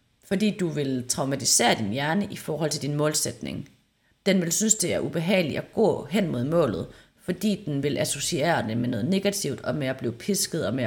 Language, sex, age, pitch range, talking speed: Danish, female, 30-49, 135-200 Hz, 205 wpm